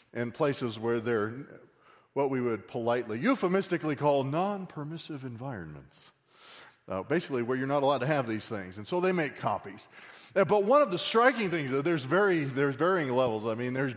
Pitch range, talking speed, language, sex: 125-190 Hz, 180 wpm, English, male